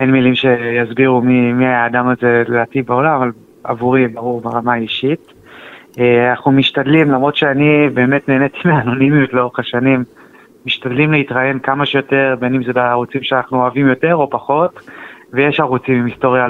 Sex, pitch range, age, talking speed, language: male, 120-135 Hz, 20-39, 145 wpm, Hebrew